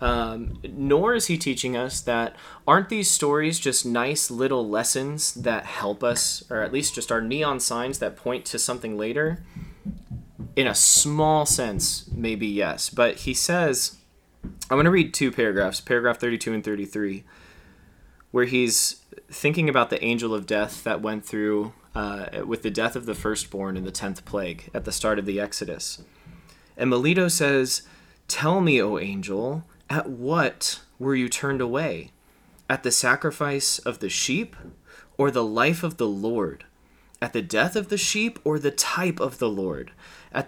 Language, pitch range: English, 110-150 Hz